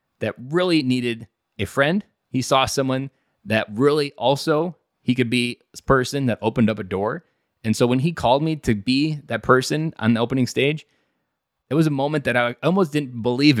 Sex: male